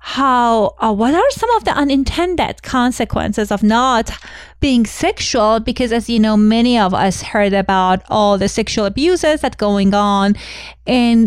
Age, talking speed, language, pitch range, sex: 30-49, 160 wpm, English, 210-290 Hz, female